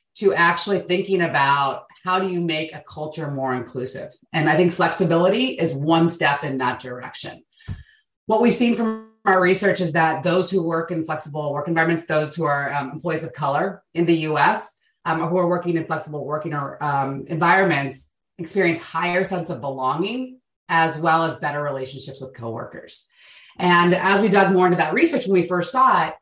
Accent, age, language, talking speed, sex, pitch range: American, 30-49, English, 185 wpm, female, 145-190 Hz